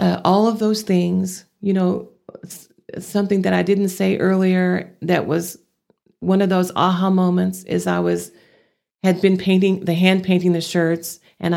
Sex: female